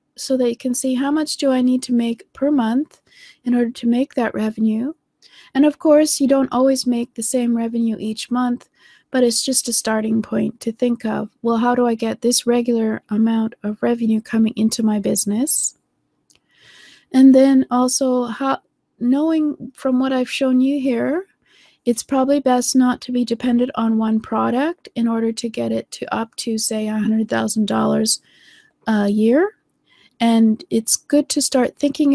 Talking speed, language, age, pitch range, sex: 175 wpm, English, 30-49, 220-260 Hz, female